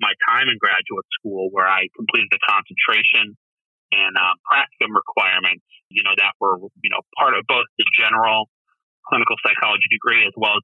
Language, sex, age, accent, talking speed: English, male, 30-49, American, 175 wpm